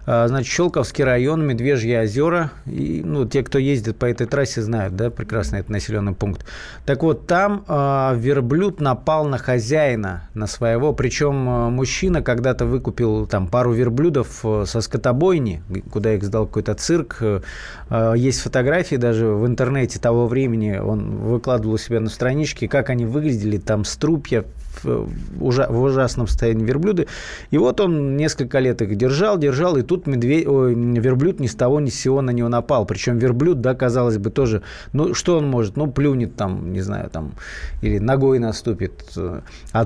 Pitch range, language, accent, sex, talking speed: 110-135 Hz, Russian, native, male, 165 wpm